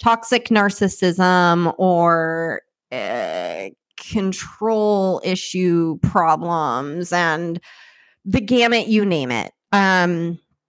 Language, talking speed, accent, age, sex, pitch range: English, 80 wpm, American, 20-39, female, 165-205 Hz